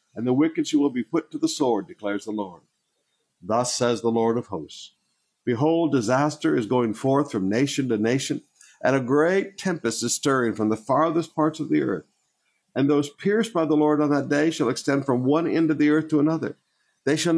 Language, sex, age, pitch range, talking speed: English, male, 60-79, 120-155 Hz, 210 wpm